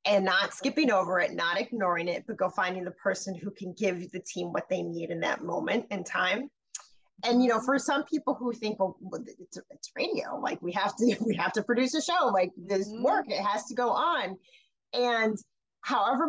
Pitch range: 190-255 Hz